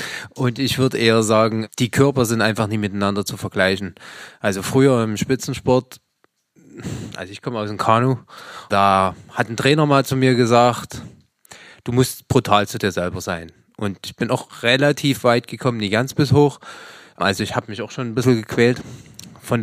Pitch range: 110-135 Hz